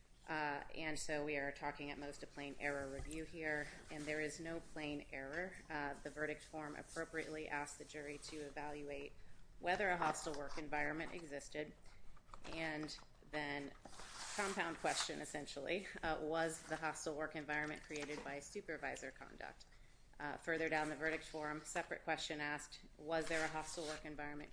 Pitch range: 145-160 Hz